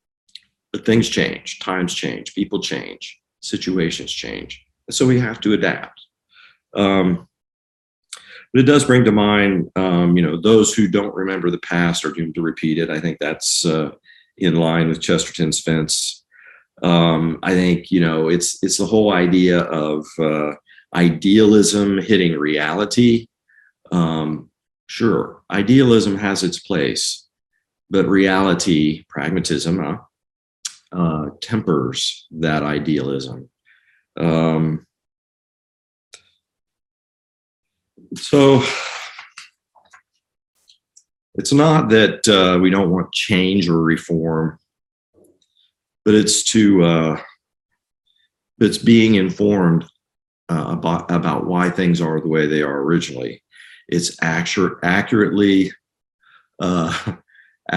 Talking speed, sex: 110 wpm, male